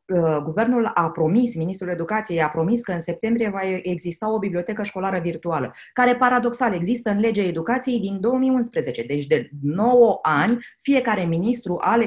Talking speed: 155 wpm